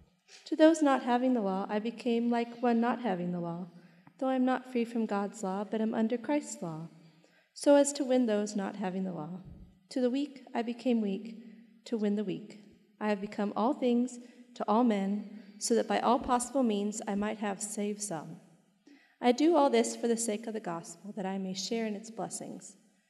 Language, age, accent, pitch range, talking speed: English, 30-49, American, 200-245 Hz, 215 wpm